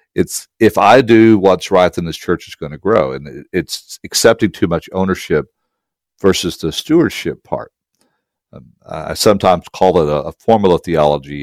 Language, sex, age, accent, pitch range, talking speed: English, male, 50-69, American, 75-95 Hz, 170 wpm